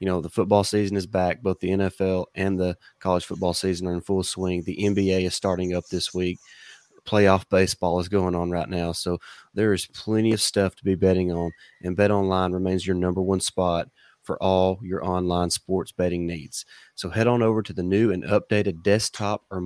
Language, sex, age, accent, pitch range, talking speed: English, male, 30-49, American, 90-100 Hz, 210 wpm